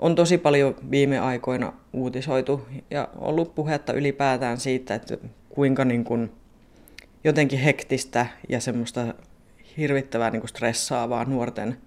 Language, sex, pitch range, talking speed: Finnish, female, 125-145 Hz, 115 wpm